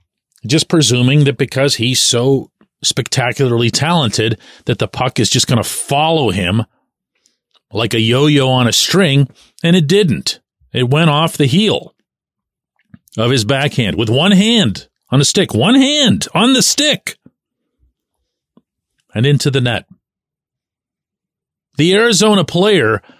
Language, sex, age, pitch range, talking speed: English, male, 40-59, 115-165 Hz, 135 wpm